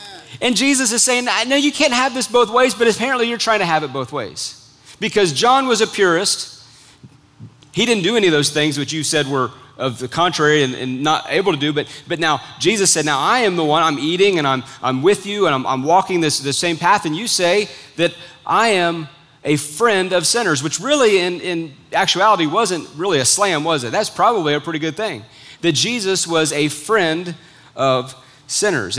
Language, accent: English, American